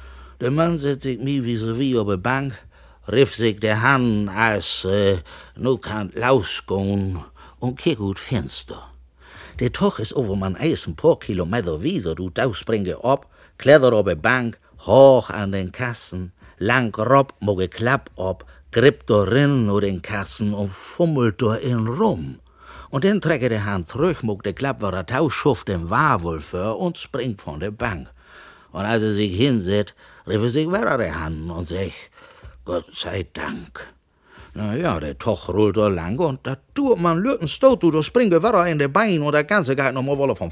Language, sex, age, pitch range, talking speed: German, male, 60-79, 100-140 Hz, 180 wpm